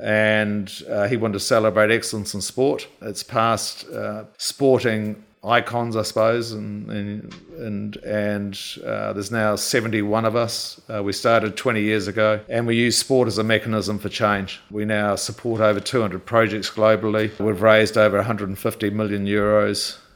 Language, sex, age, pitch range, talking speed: English, male, 50-69, 100-110 Hz, 160 wpm